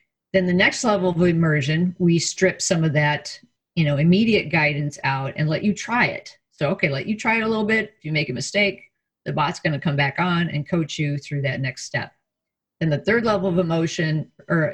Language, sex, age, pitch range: English, female, 50-69, 155-195 Hz